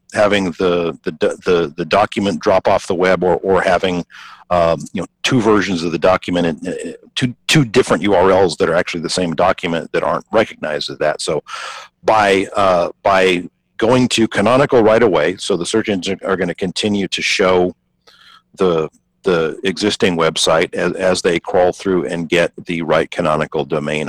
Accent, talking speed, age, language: American, 175 wpm, 50-69, English